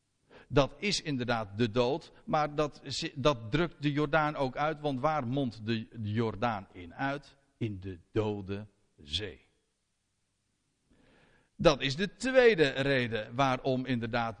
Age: 50-69